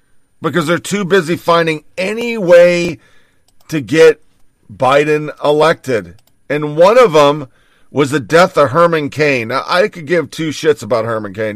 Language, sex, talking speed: English, male, 155 wpm